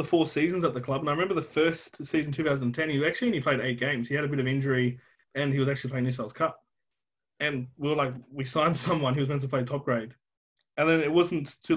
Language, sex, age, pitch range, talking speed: English, male, 20-39, 135-165 Hz, 265 wpm